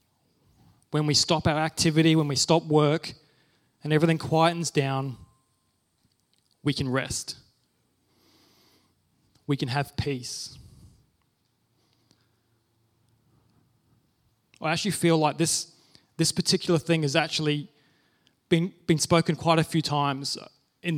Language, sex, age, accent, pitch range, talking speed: English, male, 20-39, Australian, 135-160 Hz, 110 wpm